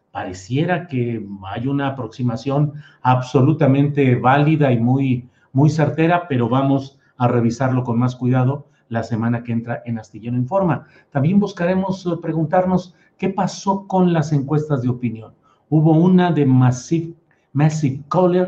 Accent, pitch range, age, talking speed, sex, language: Mexican, 125-160 Hz, 50-69, 135 wpm, male, Spanish